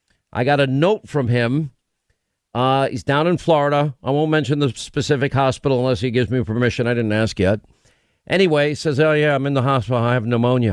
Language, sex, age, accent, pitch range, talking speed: English, male, 50-69, American, 125-160 Hz, 215 wpm